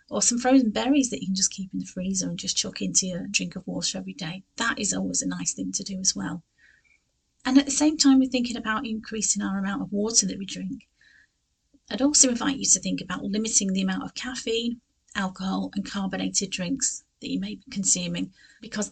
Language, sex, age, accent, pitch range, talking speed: English, female, 30-49, British, 185-230 Hz, 220 wpm